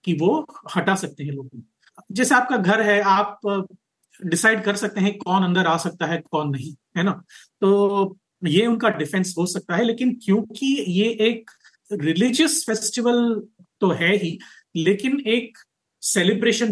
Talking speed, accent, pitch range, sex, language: 155 wpm, native, 165-215 Hz, male, Hindi